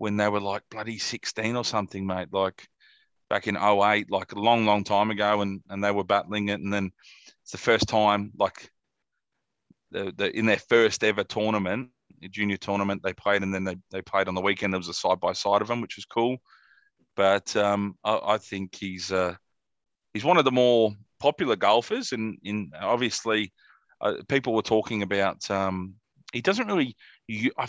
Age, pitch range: 30-49, 100-120 Hz